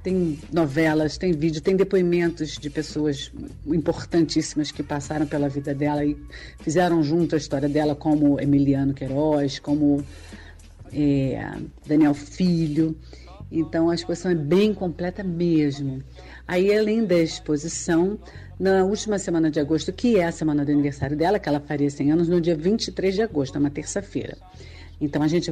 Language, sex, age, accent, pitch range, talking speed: Portuguese, female, 40-59, Brazilian, 145-180 Hz, 155 wpm